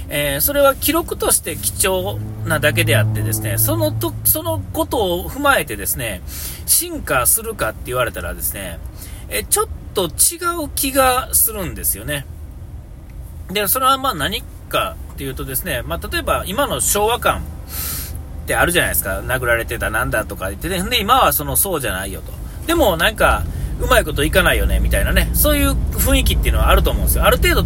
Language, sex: Japanese, male